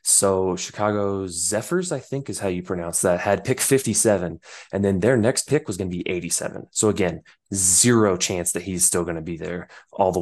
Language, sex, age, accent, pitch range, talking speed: English, male, 20-39, American, 95-120 Hz, 210 wpm